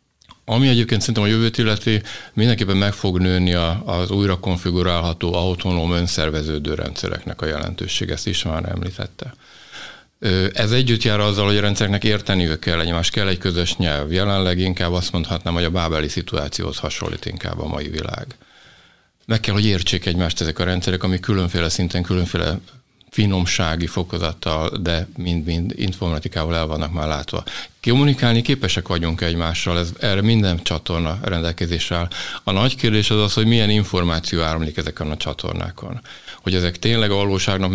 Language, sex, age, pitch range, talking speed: Hungarian, male, 50-69, 85-105 Hz, 155 wpm